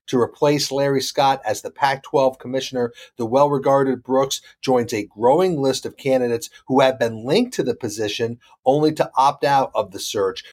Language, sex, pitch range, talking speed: English, male, 125-160 Hz, 175 wpm